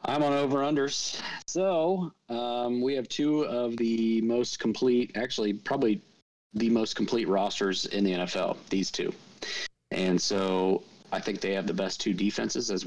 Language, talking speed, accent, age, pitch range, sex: English, 160 wpm, American, 30-49, 95-115 Hz, male